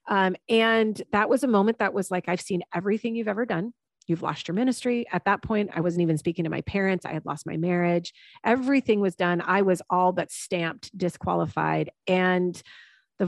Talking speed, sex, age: 205 wpm, female, 30-49